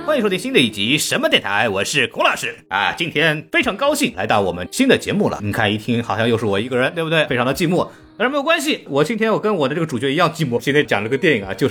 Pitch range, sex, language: 105-155 Hz, male, Chinese